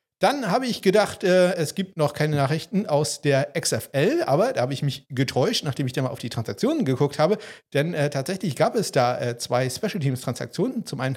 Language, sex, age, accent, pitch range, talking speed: German, male, 50-69, German, 125-165 Hz, 215 wpm